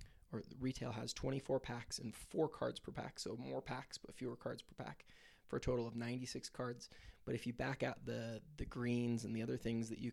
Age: 20-39